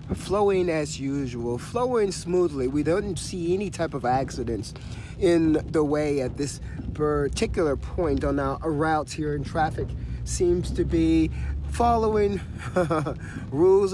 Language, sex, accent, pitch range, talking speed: English, male, American, 140-175 Hz, 130 wpm